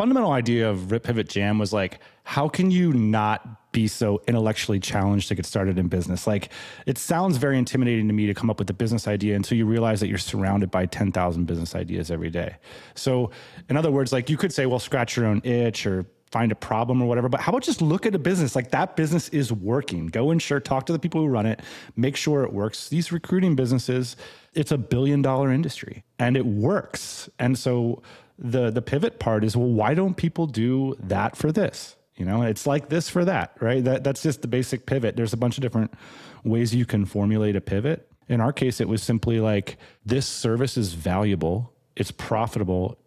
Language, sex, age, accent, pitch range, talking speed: English, male, 30-49, American, 100-130 Hz, 220 wpm